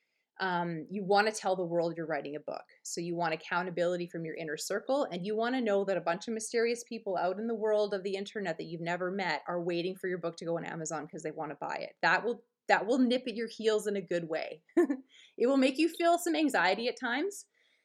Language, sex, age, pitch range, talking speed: English, female, 30-49, 170-230 Hz, 260 wpm